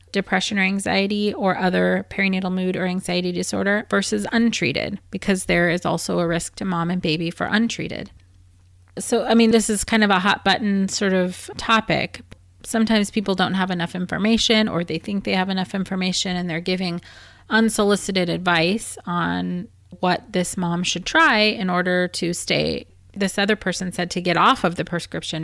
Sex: female